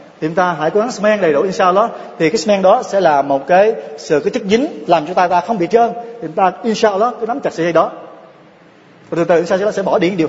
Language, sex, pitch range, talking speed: Vietnamese, male, 165-220 Hz, 270 wpm